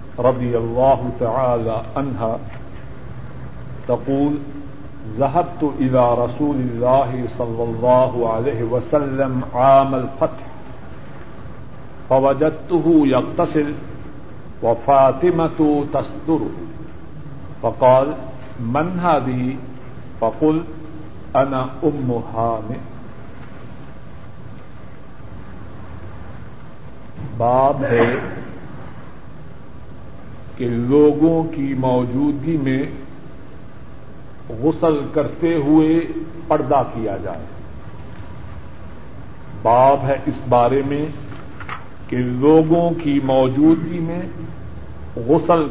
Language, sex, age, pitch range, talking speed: Urdu, male, 60-79, 115-145 Hz, 50 wpm